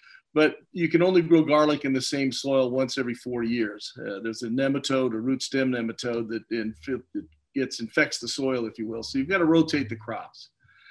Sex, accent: male, American